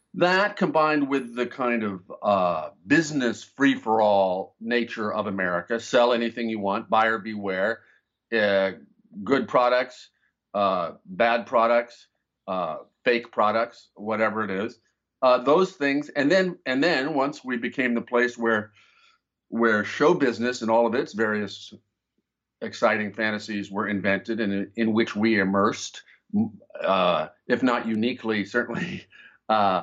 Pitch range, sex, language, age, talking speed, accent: 110-135 Hz, male, English, 50-69, 125 wpm, American